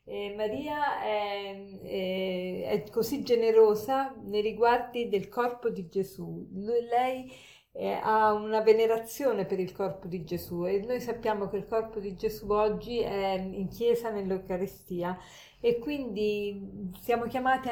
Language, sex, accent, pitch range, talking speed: Italian, female, native, 195-235 Hz, 140 wpm